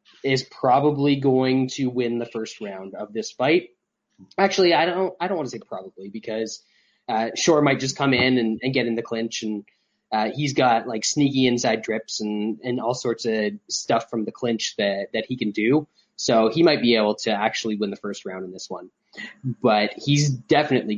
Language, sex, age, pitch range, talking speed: English, male, 20-39, 110-135 Hz, 205 wpm